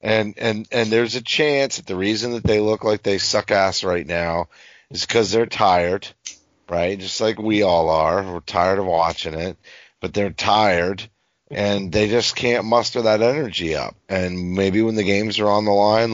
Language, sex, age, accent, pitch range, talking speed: English, male, 30-49, American, 95-115 Hz, 195 wpm